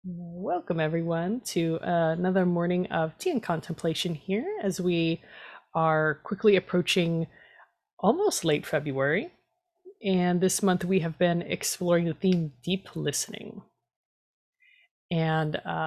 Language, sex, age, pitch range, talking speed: English, female, 30-49, 160-215 Hz, 115 wpm